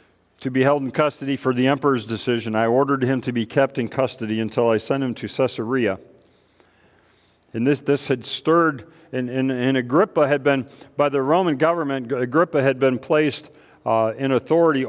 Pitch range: 125-150 Hz